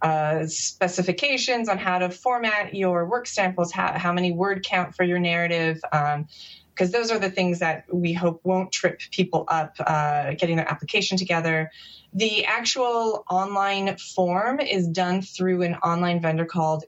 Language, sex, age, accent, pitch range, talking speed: English, female, 30-49, American, 165-195 Hz, 165 wpm